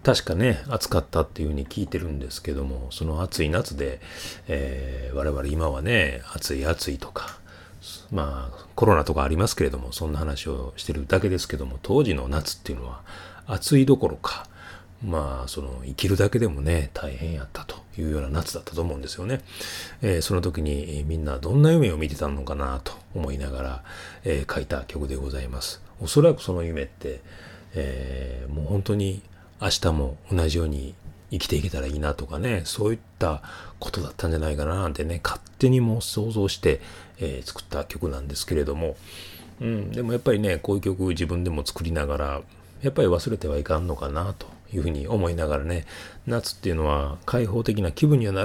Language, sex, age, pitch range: Japanese, male, 30-49, 75-95 Hz